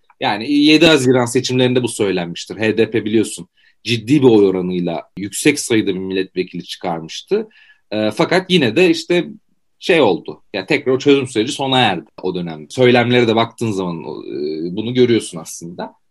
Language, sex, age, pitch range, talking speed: Turkish, male, 40-59, 110-165 Hz, 150 wpm